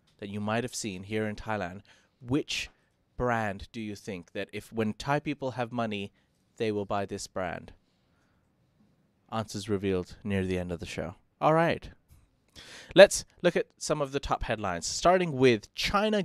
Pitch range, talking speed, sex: 100-130 Hz, 165 wpm, male